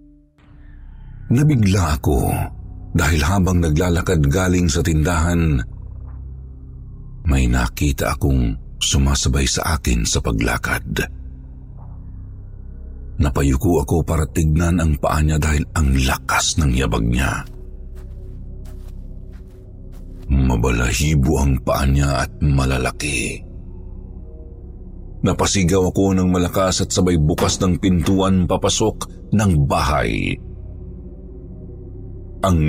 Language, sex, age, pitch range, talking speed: Filipino, male, 50-69, 70-95 Hz, 90 wpm